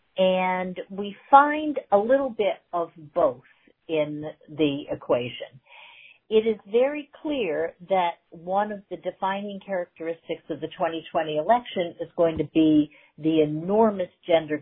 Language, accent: English, American